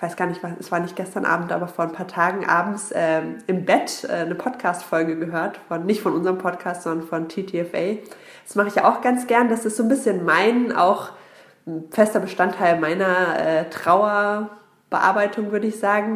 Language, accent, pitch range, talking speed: German, German, 165-200 Hz, 200 wpm